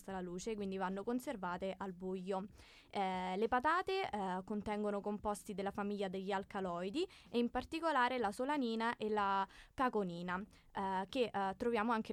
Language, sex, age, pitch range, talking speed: Italian, female, 20-39, 195-240 Hz, 150 wpm